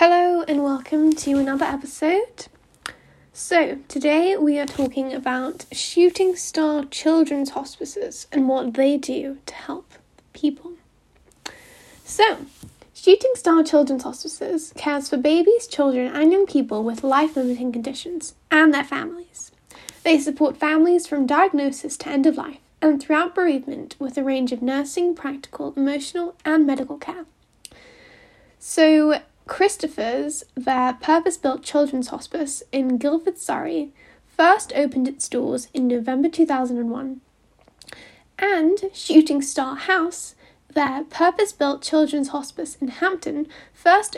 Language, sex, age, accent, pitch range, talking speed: English, female, 10-29, British, 275-335 Hz, 120 wpm